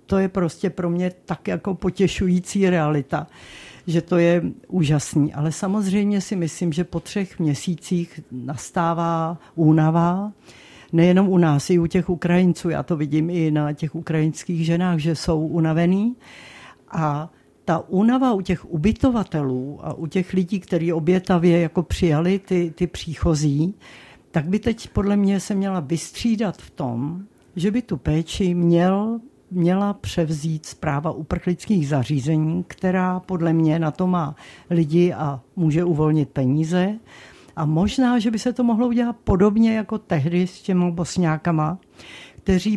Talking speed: 145 wpm